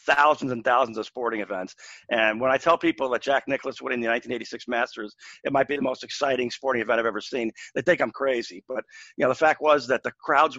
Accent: American